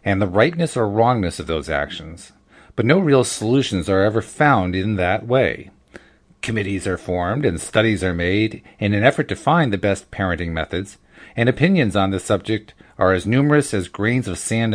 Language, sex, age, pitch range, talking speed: English, male, 40-59, 95-140 Hz, 185 wpm